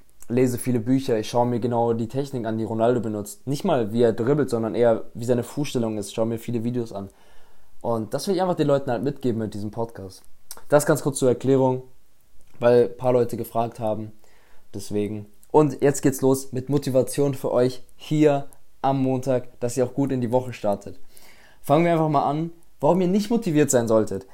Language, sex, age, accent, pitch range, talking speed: German, male, 20-39, German, 125-170 Hz, 205 wpm